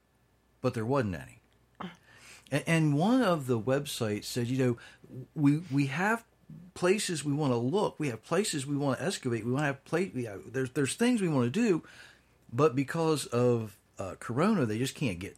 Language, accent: English, American